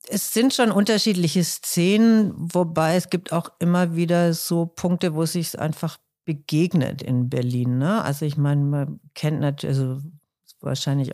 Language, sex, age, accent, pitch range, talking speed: German, female, 50-69, German, 145-175 Hz, 155 wpm